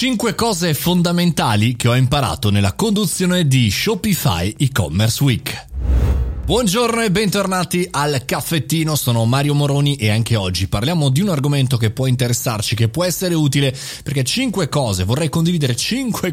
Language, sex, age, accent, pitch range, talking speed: Italian, male, 30-49, native, 110-150 Hz, 145 wpm